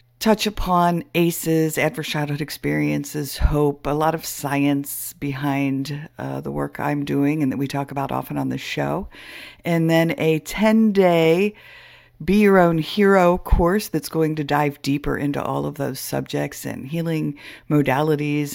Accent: American